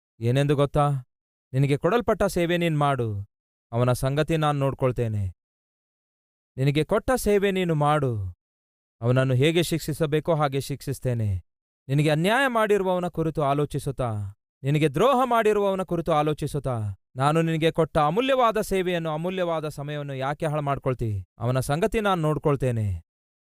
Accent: native